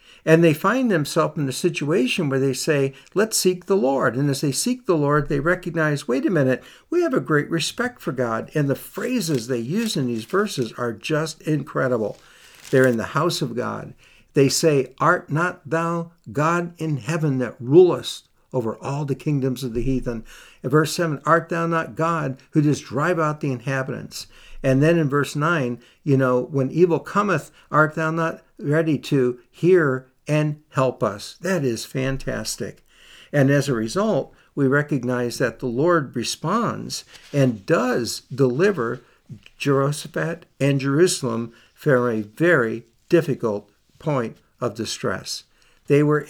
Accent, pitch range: American, 125-165 Hz